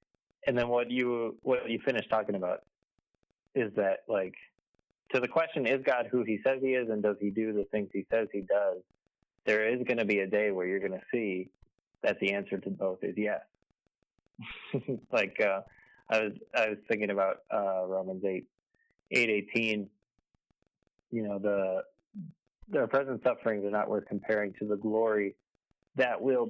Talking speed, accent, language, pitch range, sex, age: 175 wpm, American, English, 100-125 Hz, male, 30-49